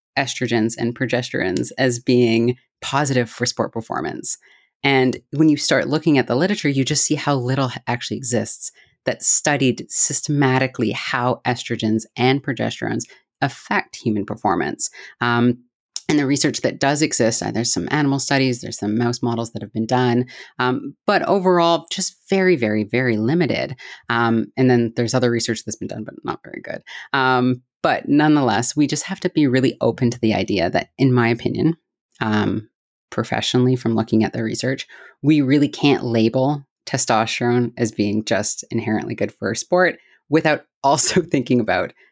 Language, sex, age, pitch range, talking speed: English, female, 30-49, 115-140 Hz, 160 wpm